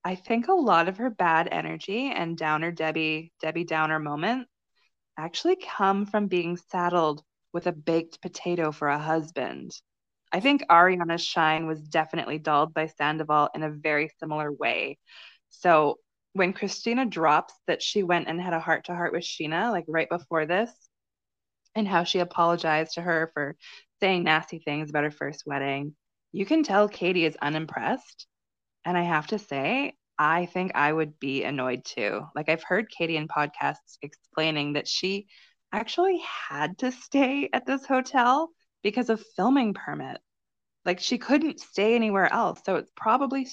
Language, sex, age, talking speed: English, female, 20-39, 165 wpm